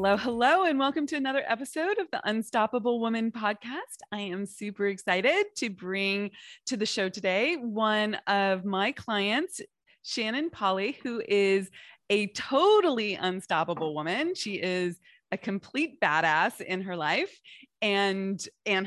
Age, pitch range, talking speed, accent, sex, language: 20-39, 185-240 Hz, 140 wpm, American, female, English